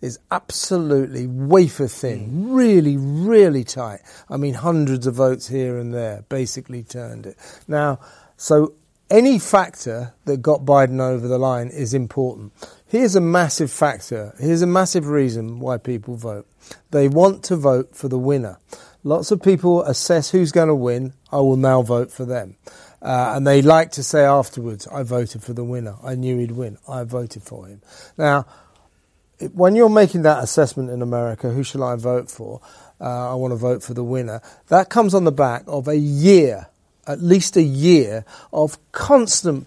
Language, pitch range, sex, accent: English, 125-160 Hz, male, British